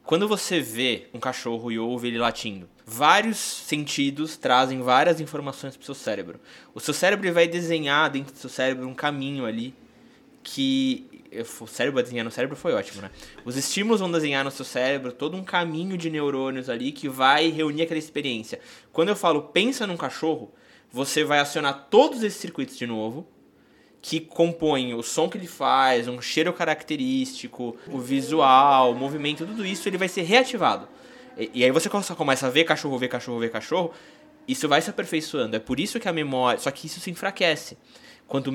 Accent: Brazilian